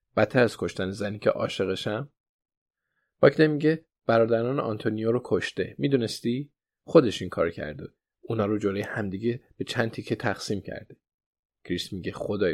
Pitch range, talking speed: 100-135 Hz, 140 wpm